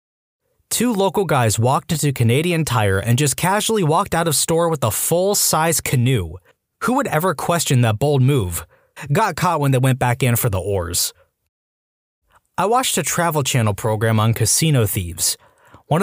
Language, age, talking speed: English, 20-39, 170 wpm